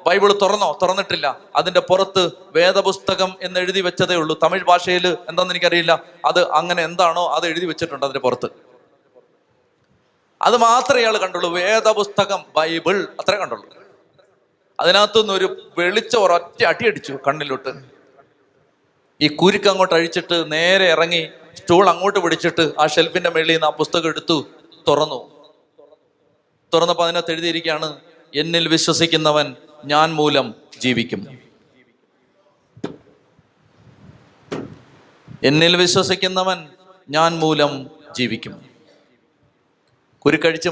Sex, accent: male, native